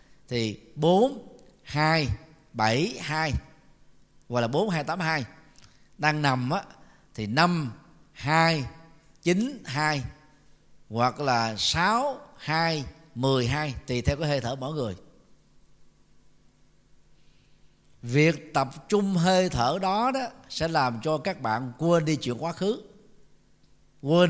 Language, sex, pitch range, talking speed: Vietnamese, male, 135-190 Hz, 120 wpm